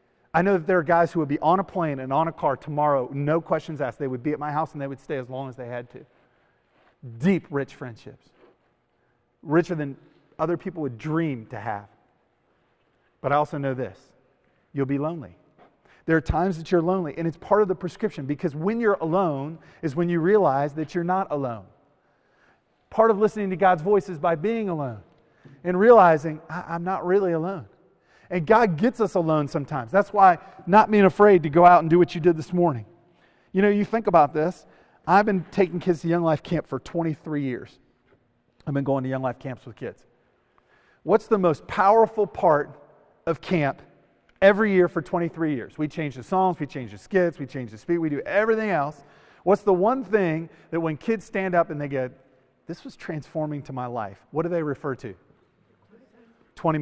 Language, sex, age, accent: English, male, 30-49, American